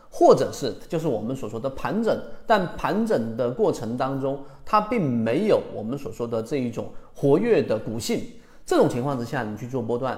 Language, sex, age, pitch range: Chinese, male, 30-49, 115-175 Hz